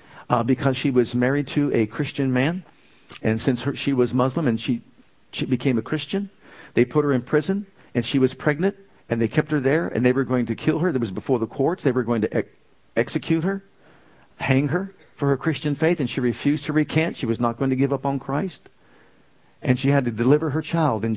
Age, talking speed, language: 50-69, 225 wpm, English